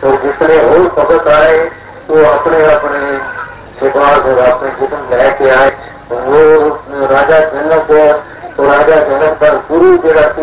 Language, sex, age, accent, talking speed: Hindi, male, 50-69, native, 115 wpm